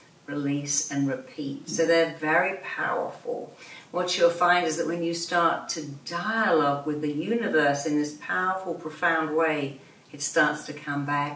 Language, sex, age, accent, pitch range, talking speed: English, female, 50-69, British, 140-160 Hz, 160 wpm